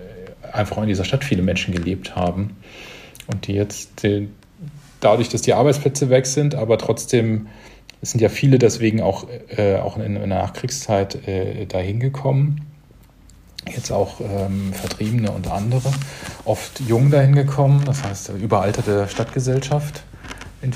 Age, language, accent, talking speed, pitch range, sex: 40-59, German, German, 145 wpm, 100-125 Hz, male